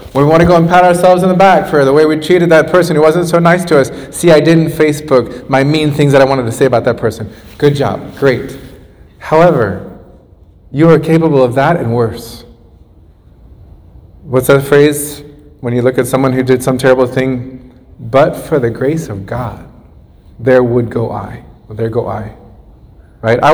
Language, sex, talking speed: English, male, 195 wpm